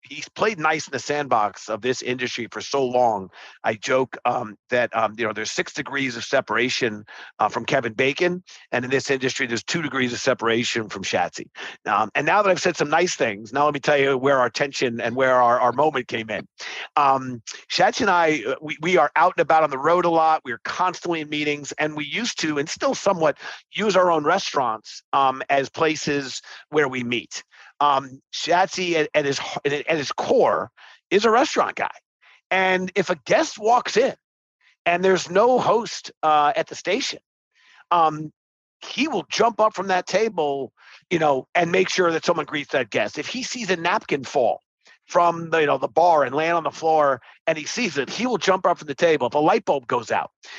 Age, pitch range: 50-69, 135-185 Hz